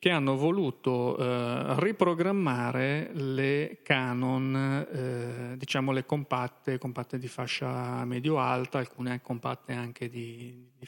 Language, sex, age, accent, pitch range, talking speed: Italian, male, 40-59, native, 125-145 Hz, 115 wpm